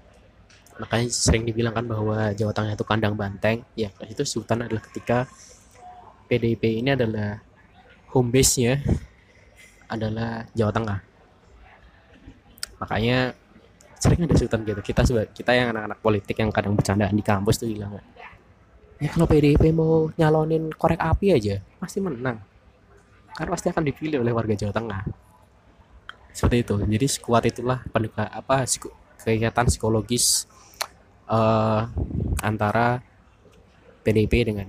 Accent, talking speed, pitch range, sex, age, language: native, 125 wpm, 100-120 Hz, male, 20-39, Indonesian